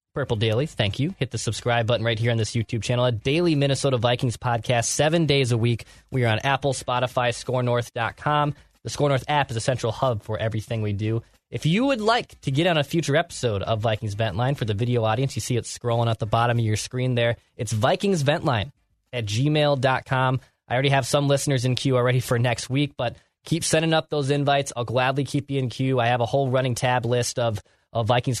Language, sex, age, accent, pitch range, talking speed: English, male, 20-39, American, 115-140 Hz, 220 wpm